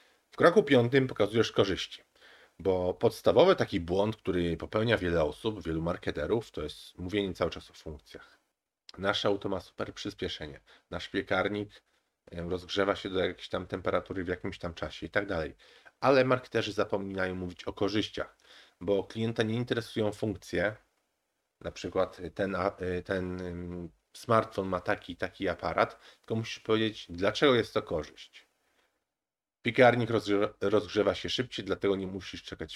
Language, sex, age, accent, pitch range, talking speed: Polish, male, 40-59, native, 90-105 Hz, 140 wpm